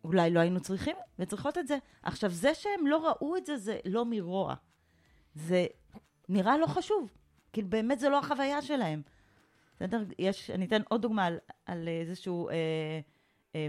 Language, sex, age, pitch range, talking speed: Hebrew, female, 30-49, 170-255 Hz, 165 wpm